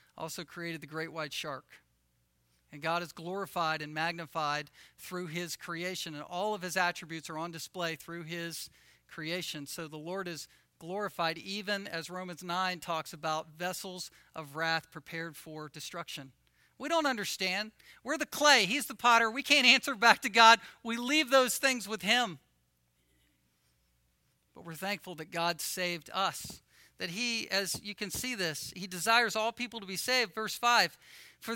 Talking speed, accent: 165 wpm, American